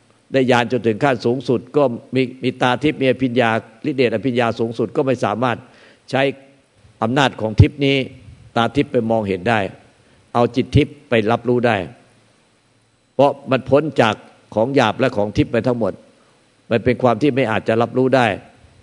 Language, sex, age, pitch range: Thai, male, 60-79, 115-135 Hz